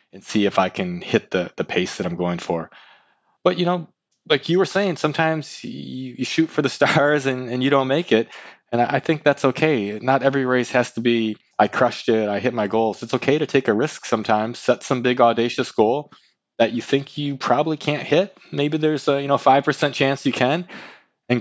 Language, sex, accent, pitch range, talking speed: English, male, American, 115-145 Hz, 230 wpm